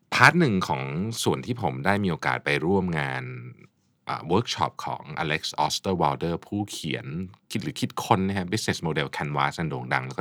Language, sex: Thai, male